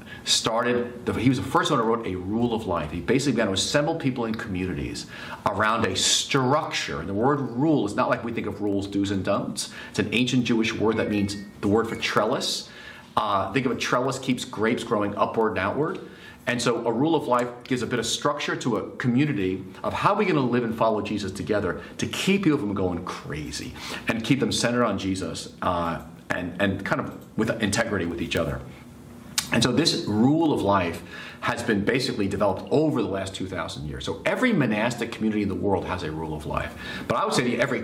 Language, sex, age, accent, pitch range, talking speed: English, male, 40-59, American, 95-135 Hz, 225 wpm